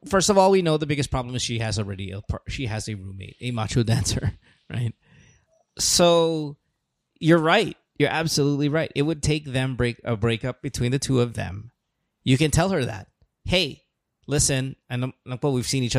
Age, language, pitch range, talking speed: 20-39, English, 115-140 Hz, 205 wpm